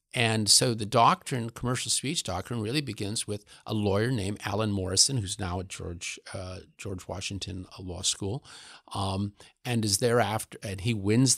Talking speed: 165 wpm